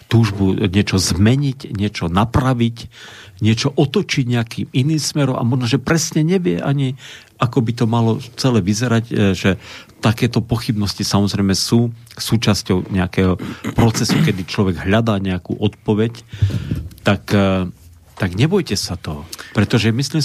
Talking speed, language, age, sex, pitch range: 125 wpm, Slovak, 50-69, male, 95-120 Hz